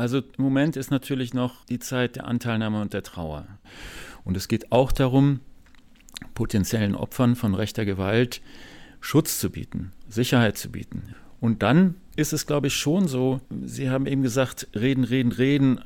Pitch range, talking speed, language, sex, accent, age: 110-135 Hz, 165 wpm, German, male, German, 50-69